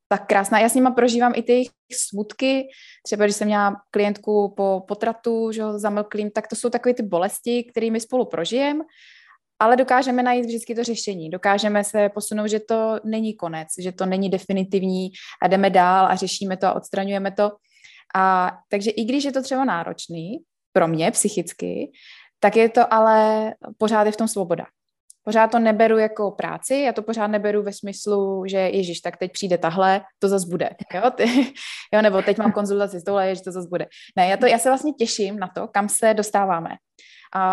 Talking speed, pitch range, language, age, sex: 190 wpm, 195-230 Hz, Slovak, 20-39, female